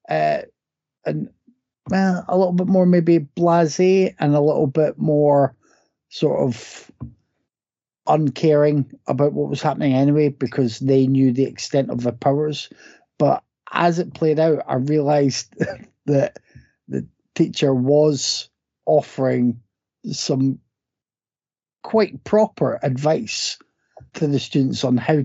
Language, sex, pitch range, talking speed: English, male, 130-160 Hz, 120 wpm